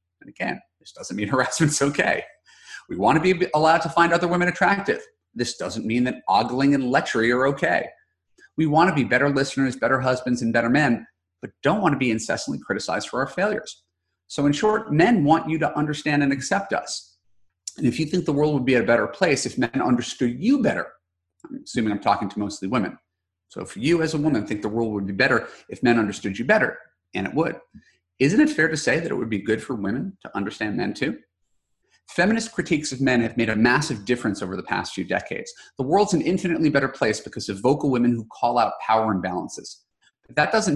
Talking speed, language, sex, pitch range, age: 220 wpm, English, male, 110-160 Hz, 30-49